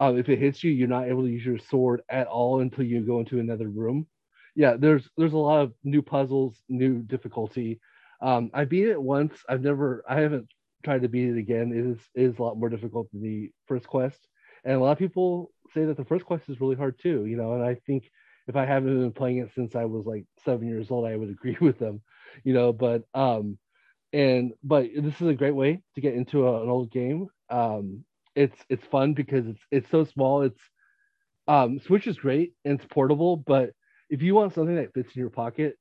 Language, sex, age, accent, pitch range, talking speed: English, male, 30-49, American, 120-140 Hz, 230 wpm